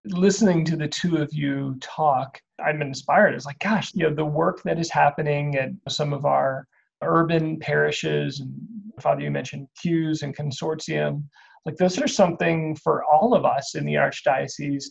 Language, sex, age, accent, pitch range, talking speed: English, male, 30-49, American, 135-180 Hz, 175 wpm